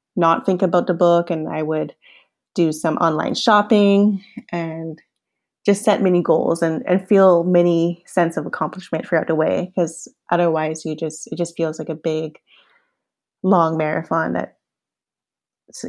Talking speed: 150 wpm